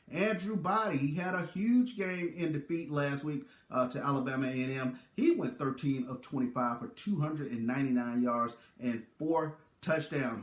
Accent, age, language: American, 30-49, English